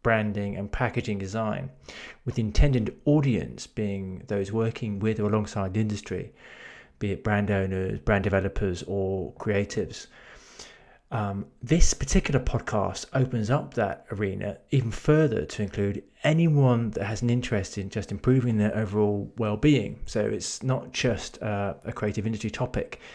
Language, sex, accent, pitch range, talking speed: English, male, British, 100-125 Hz, 145 wpm